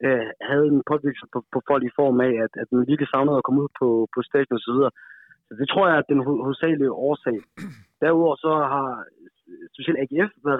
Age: 30-49